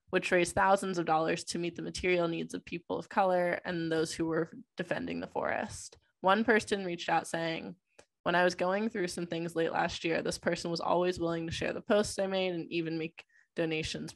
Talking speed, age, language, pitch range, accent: 215 wpm, 20-39, English, 165-185 Hz, American